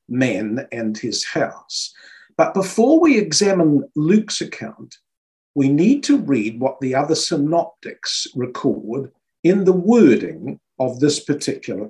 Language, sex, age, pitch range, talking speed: English, male, 50-69, 140-205 Hz, 125 wpm